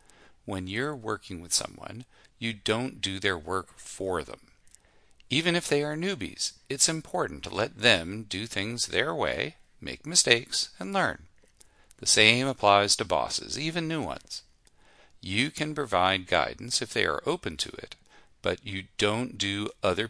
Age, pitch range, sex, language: 40-59, 95-135 Hz, male, English